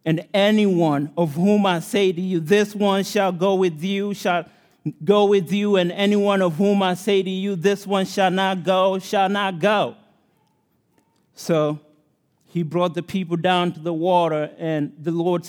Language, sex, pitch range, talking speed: English, male, 160-190 Hz, 180 wpm